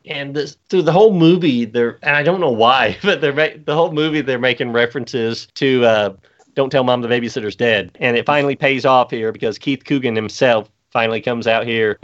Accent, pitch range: American, 110-140 Hz